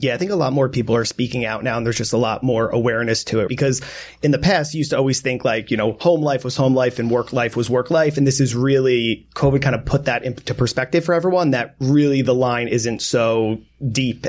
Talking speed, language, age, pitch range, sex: 265 wpm, English, 30-49, 120-140 Hz, male